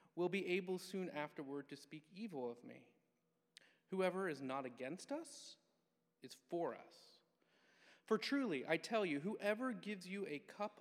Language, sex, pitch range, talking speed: English, male, 140-195 Hz, 155 wpm